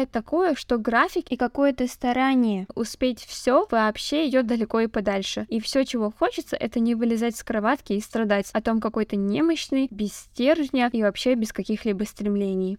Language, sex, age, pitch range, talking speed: Russian, female, 10-29, 215-255 Hz, 165 wpm